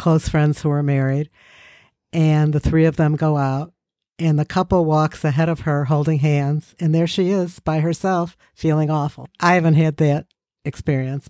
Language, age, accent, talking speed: English, 60-79, American, 180 wpm